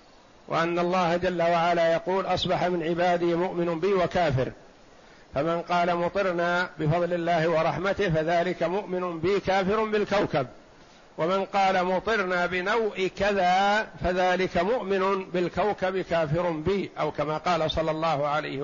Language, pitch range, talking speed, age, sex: Arabic, 165-200 Hz, 120 wpm, 50-69, male